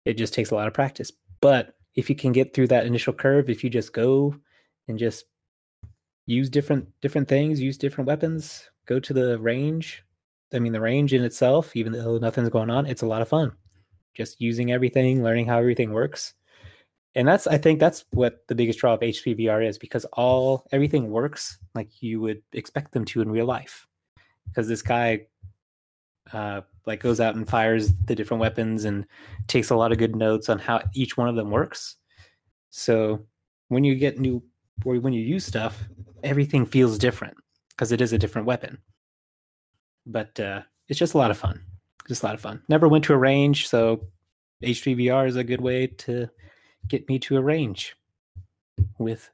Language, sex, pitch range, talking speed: English, male, 105-130 Hz, 190 wpm